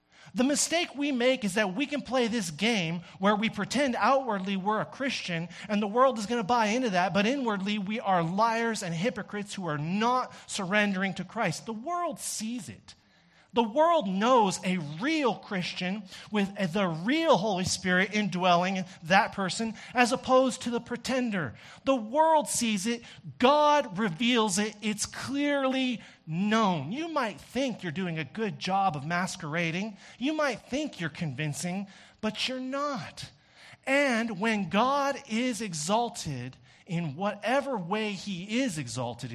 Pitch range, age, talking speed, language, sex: 140-225 Hz, 40-59, 155 wpm, English, male